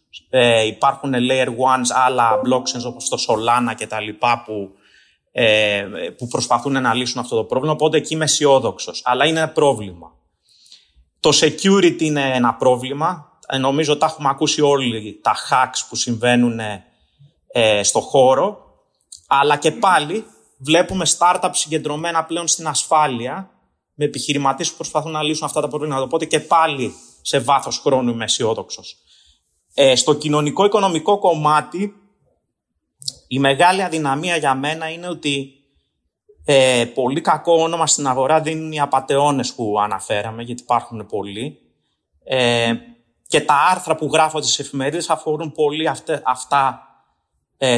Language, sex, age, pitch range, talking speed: Greek, male, 30-49, 120-155 Hz, 140 wpm